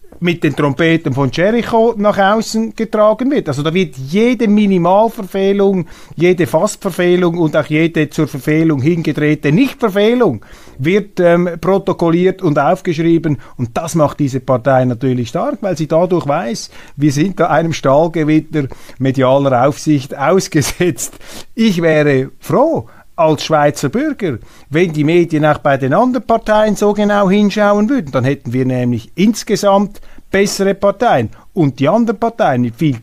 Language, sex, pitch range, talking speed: German, male, 135-190 Hz, 140 wpm